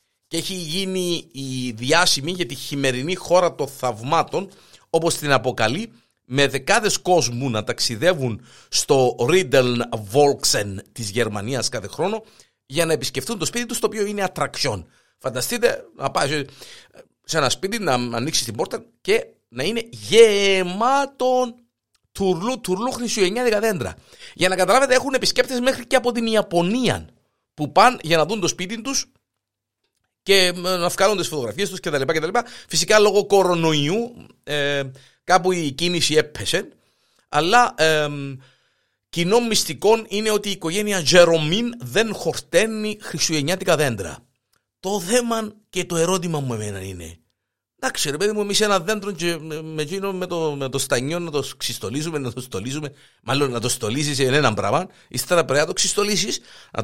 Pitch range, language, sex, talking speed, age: 135-205 Hz, Greek, male, 145 wpm, 50-69